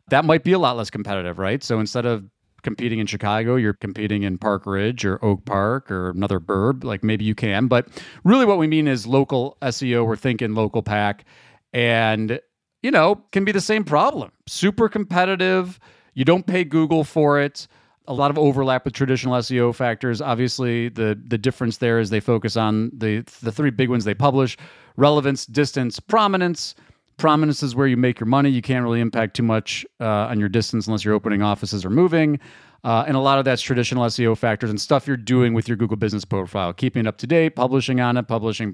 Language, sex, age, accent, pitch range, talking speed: English, male, 40-59, American, 105-145 Hz, 210 wpm